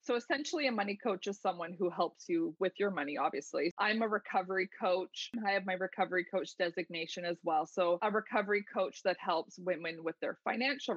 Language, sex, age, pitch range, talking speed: English, female, 20-39, 175-200 Hz, 195 wpm